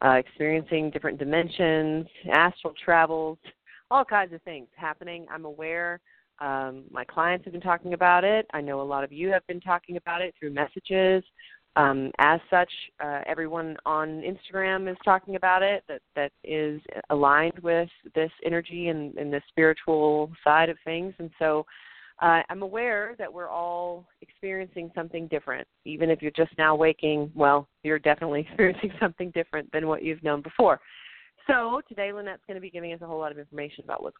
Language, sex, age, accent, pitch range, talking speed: English, female, 30-49, American, 150-175 Hz, 180 wpm